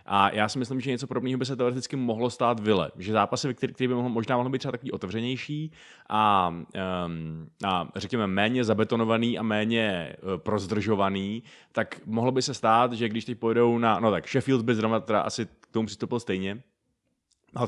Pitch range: 105-115 Hz